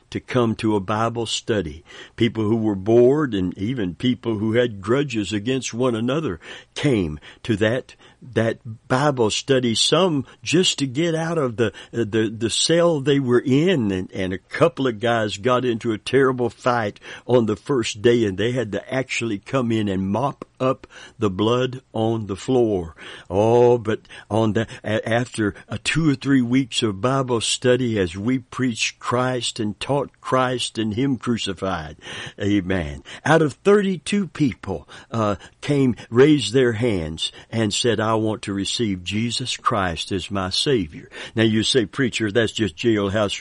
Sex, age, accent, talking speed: male, 60-79, American, 165 wpm